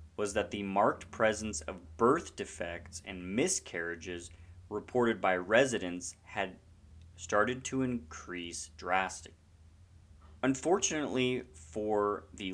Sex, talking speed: male, 100 wpm